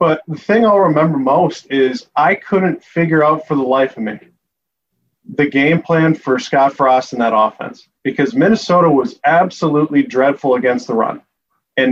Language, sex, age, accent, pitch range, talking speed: English, male, 30-49, American, 135-160 Hz, 170 wpm